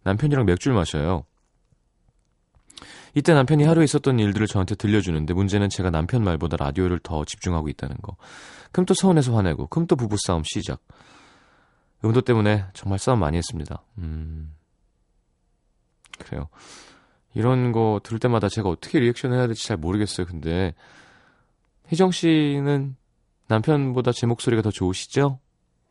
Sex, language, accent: male, Korean, native